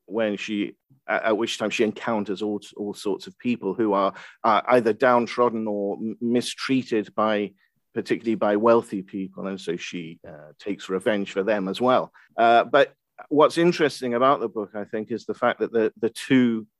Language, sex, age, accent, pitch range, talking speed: English, male, 50-69, British, 105-125 Hz, 180 wpm